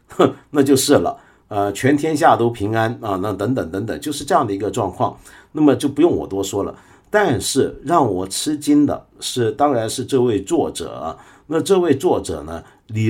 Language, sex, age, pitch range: Chinese, male, 50-69, 100-140 Hz